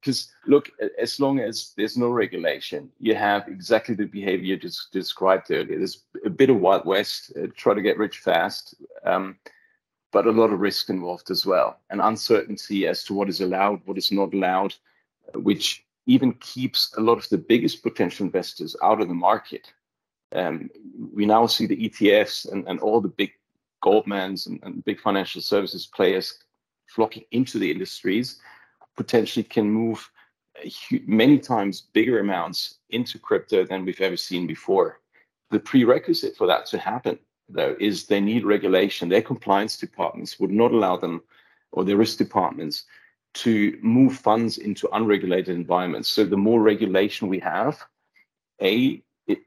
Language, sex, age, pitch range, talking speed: English, male, 40-59, 100-120 Hz, 165 wpm